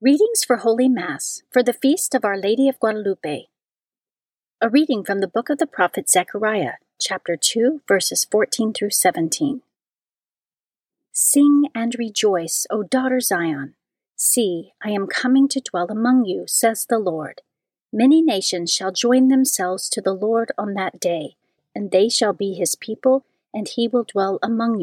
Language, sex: English, female